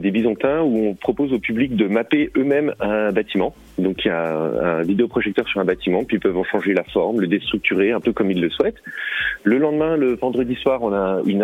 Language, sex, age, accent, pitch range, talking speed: French, male, 30-49, French, 100-130 Hz, 235 wpm